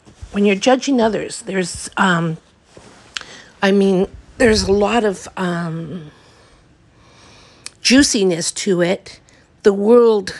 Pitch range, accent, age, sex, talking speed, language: 175-205 Hz, American, 50-69, female, 105 wpm, English